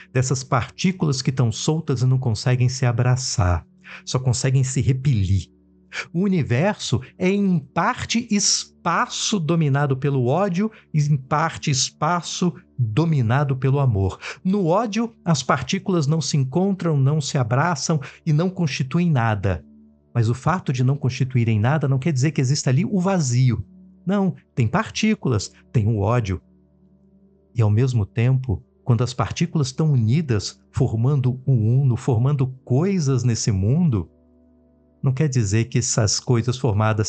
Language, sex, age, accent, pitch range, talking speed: Portuguese, male, 50-69, Brazilian, 115-155 Hz, 140 wpm